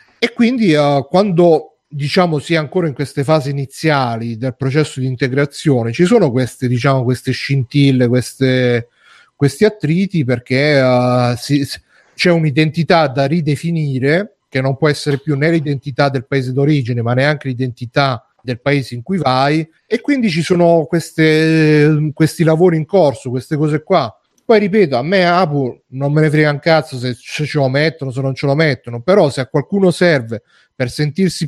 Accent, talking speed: native, 175 wpm